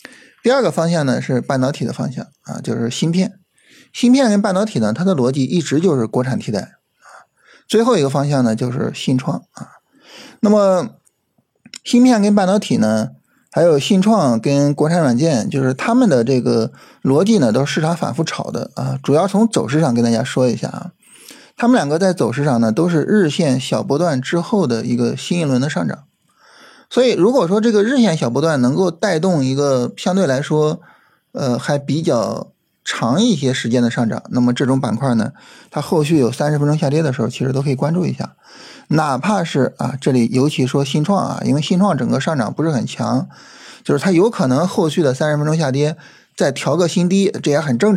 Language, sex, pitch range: Chinese, male, 130-185 Hz